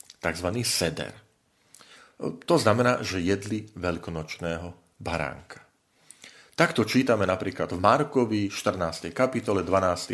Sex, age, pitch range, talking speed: male, 40-59, 90-120 Hz, 95 wpm